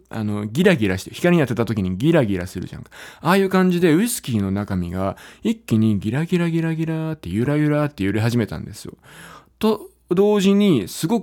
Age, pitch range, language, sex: 20-39, 100-170 Hz, Japanese, male